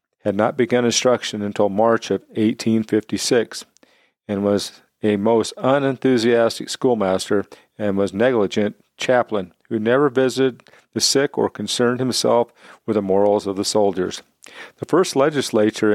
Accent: American